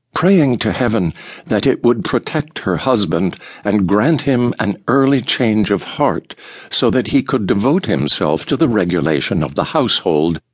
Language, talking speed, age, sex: English, 165 wpm, 60-79, male